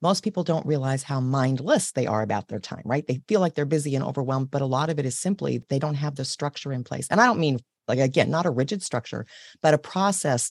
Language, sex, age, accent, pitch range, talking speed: English, female, 40-59, American, 130-165 Hz, 265 wpm